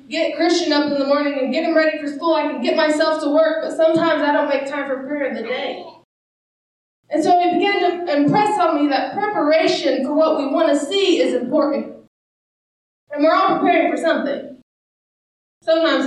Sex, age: female, 20-39